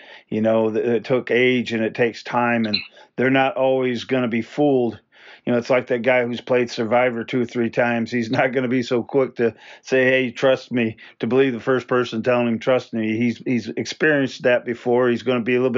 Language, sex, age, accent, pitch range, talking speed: English, male, 40-59, American, 115-130 Hz, 235 wpm